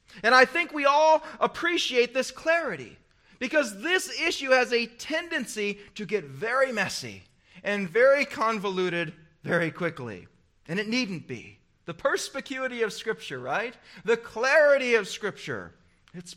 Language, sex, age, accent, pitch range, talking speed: English, male, 40-59, American, 185-270 Hz, 135 wpm